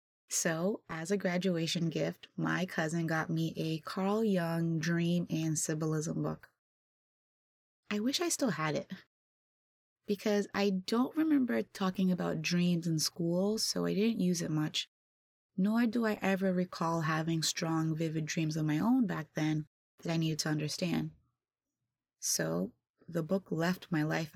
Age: 20-39